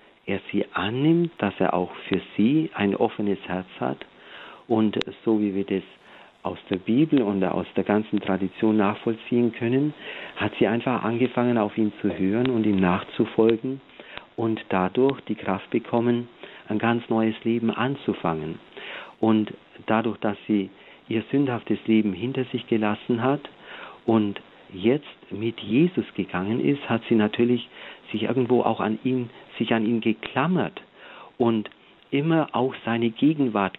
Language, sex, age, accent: German, male, 50-69, German